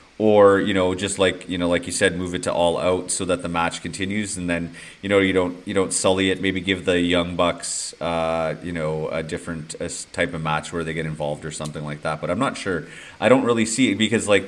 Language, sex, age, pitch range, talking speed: English, male, 30-49, 85-95 Hz, 255 wpm